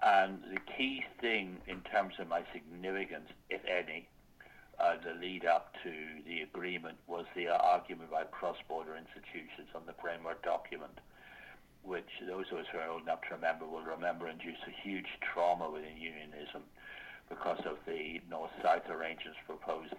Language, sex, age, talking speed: English, male, 60-79, 155 wpm